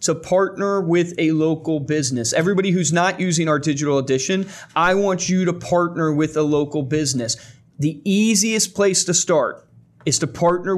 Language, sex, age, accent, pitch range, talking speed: English, male, 30-49, American, 145-185 Hz, 165 wpm